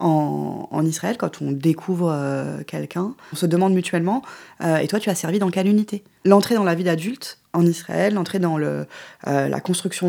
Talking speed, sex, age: 195 wpm, female, 20-39